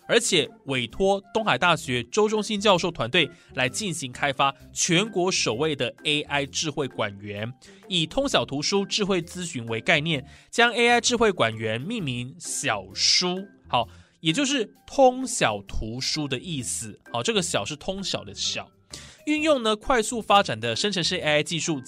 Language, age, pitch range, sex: Chinese, 20-39, 130-195 Hz, male